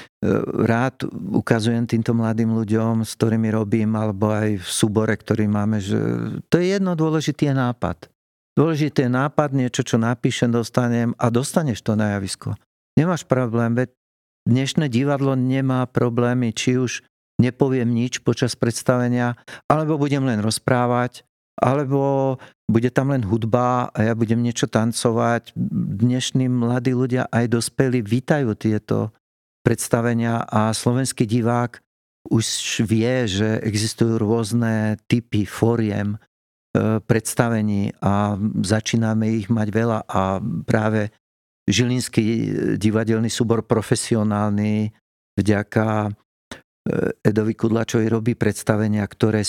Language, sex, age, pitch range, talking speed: Slovak, male, 50-69, 110-125 Hz, 115 wpm